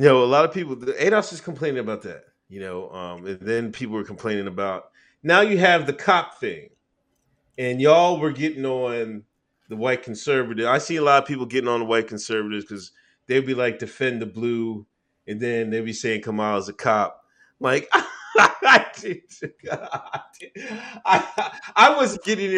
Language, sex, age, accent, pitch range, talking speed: English, male, 30-49, American, 110-155 Hz, 180 wpm